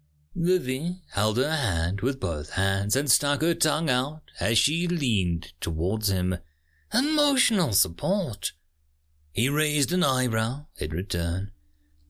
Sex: male